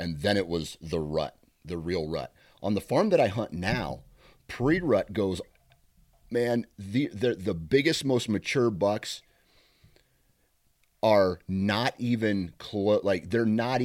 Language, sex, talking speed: English, male, 140 wpm